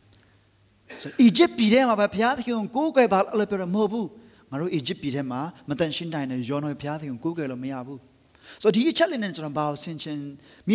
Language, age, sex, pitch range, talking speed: English, 30-49, male, 140-225 Hz, 80 wpm